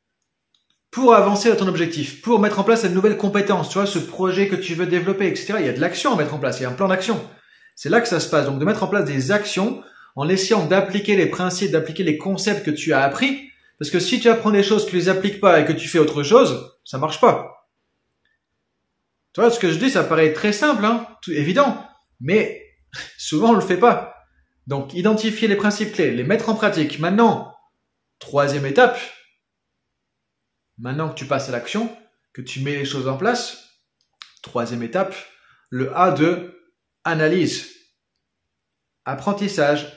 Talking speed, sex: 200 wpm, male